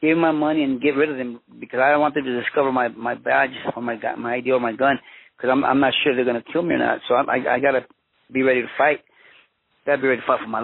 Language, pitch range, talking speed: English, 130-150 Hz, 315 wpm